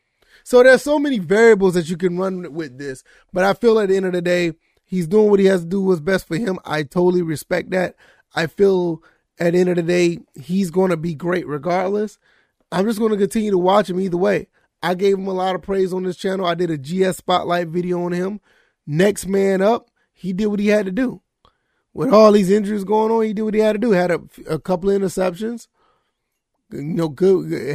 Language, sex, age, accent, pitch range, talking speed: English, male, 20-39, American, 175-210 Hz, 230 wpm